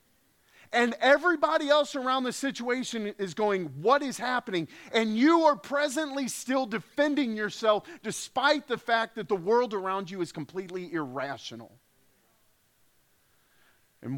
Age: 40-59